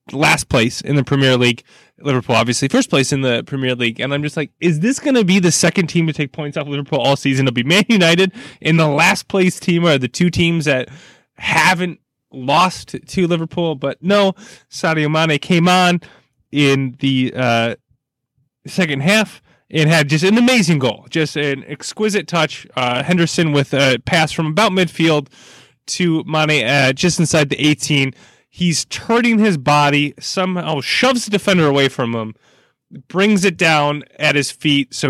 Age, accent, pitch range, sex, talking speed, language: 20-39, American, 130-170 Hz, male, 180 wpm, English